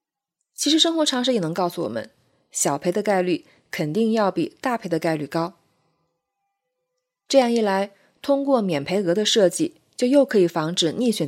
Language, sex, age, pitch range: Chinese, female, 20-39, 170-245 Hz